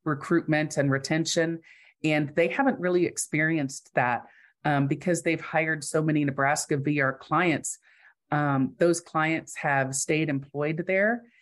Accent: American